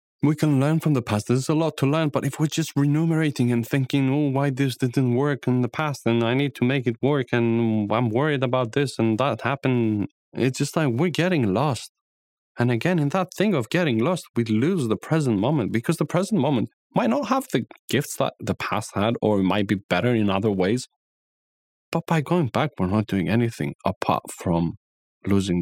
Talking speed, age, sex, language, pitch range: 215 wpm, 30-49, male, English, 115-155 Hz